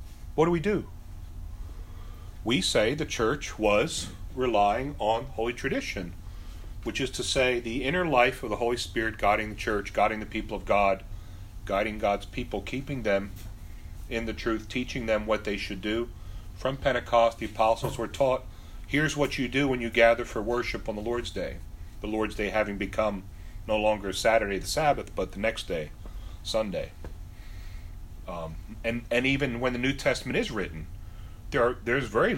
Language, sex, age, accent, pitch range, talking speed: English, male, 40-59, American, 90-120 Hz, 175 wpm